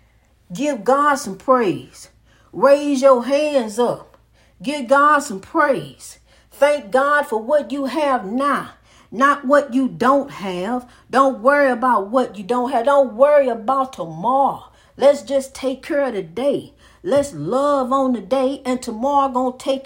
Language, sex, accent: English, female, American